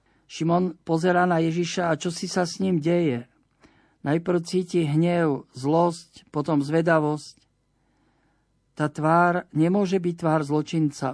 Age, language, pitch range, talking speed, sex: 50-69, Slovak, 150-175 Hz, 125 wpm, male